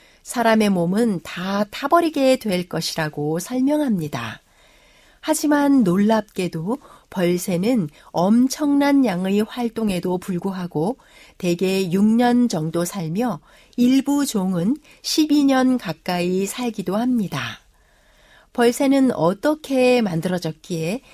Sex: female